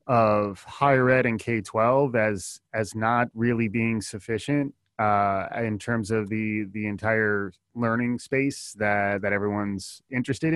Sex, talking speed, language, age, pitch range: male, 150 wpm, English, 20-39, 100-120 Hz